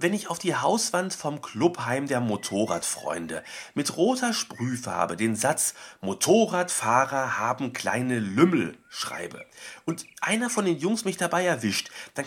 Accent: German